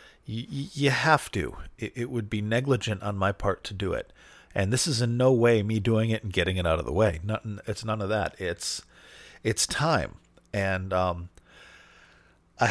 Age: 40-59